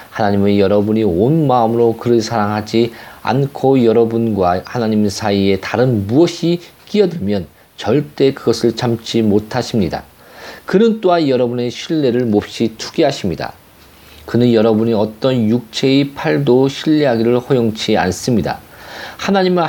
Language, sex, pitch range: Korean, male, 105-140 Hz